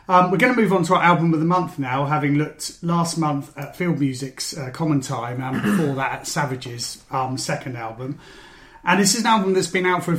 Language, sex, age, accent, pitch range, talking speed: English, male, 30-49, British, 135-170 Hz, 240 wpm